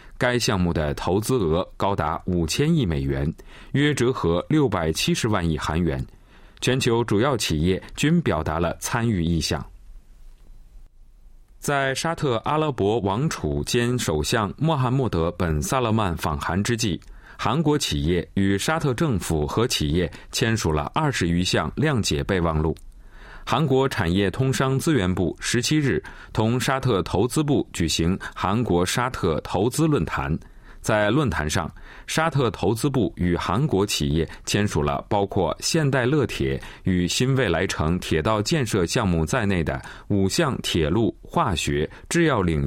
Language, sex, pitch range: Chinese, male, 85-130 Hz